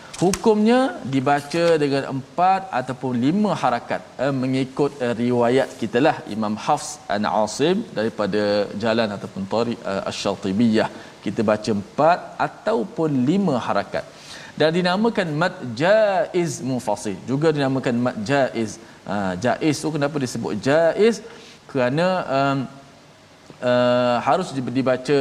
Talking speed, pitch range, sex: 120 wpm, 110-145 Hz, male